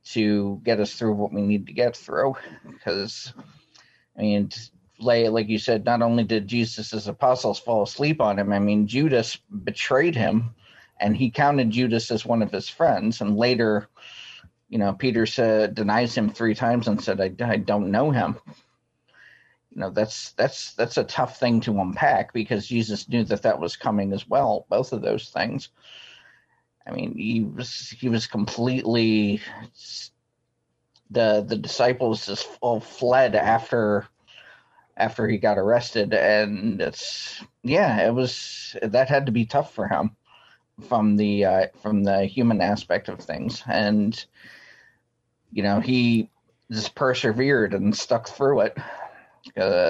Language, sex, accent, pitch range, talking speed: English, male, American, 105-120 Hz, 155 wpm